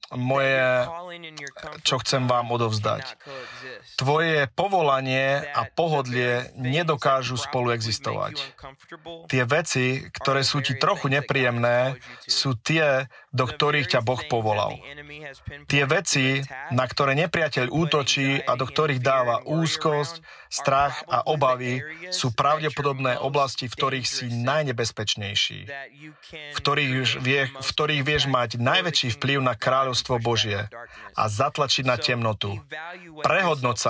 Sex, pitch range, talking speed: male, 125-150 Hz, 115 wpm